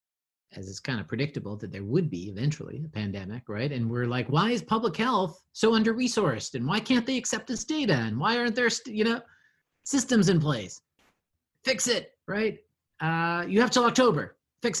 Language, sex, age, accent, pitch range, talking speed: English, male, 30-49, American, 105-150 Hz, 190 wpm